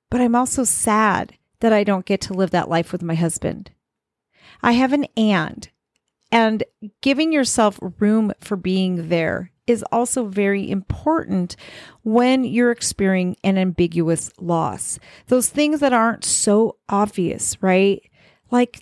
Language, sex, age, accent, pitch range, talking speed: English, female, 40-59, American, 190-240 Hz, 140 wpm